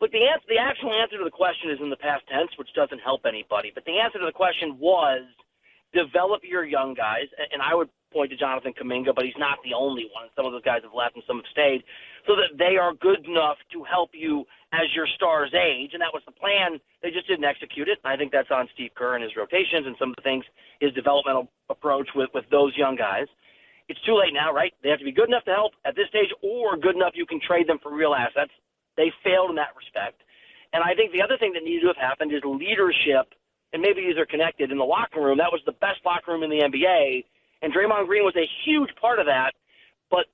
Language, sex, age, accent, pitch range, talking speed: English, male, 40-59, American, 145-200 Hz, 250 wpm